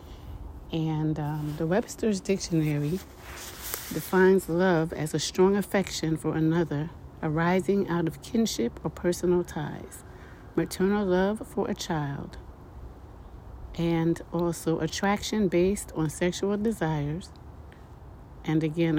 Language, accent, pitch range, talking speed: English, American, 150-180 Hz, 105 wpm